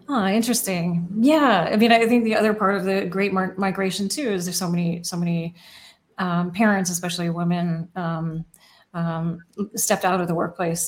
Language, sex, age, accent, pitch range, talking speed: English, female, 30-49, American, 170-200 Hz, 170 wpm